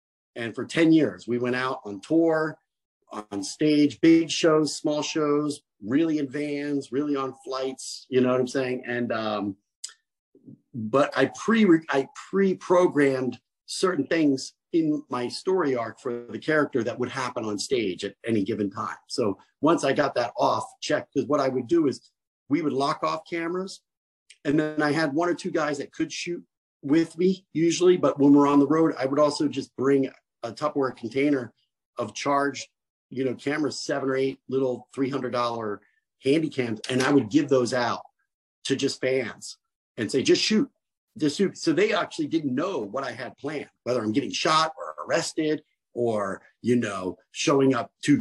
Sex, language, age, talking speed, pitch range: male, English, 50-69, 180 wpm, 130-165 Hz